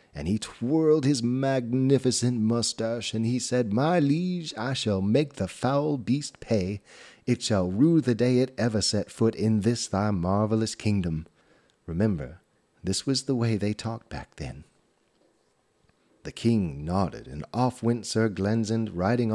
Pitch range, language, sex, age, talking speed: 95-120 Hz, English, male, 30-49, 155 wpm